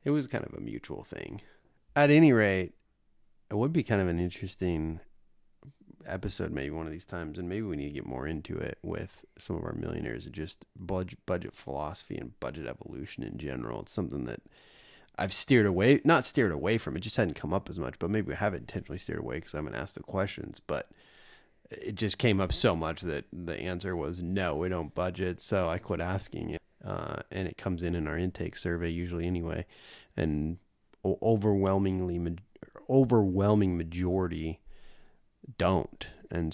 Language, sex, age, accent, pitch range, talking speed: English, male, 30-49, American, 85-100 Hz, 185 wpm